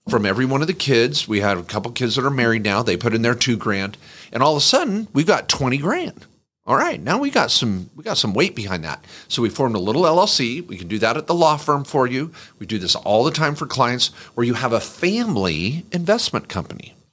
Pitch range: 105-135 Hz